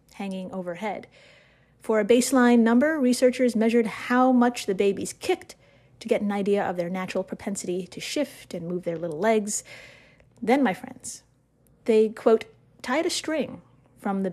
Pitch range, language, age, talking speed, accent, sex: 195-265 Hz, English, 30-49, 160 wpm, American, female